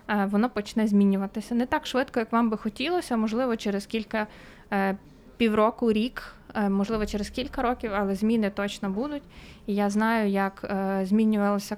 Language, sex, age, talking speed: Ukrainian, female, 20-39, 145 wpm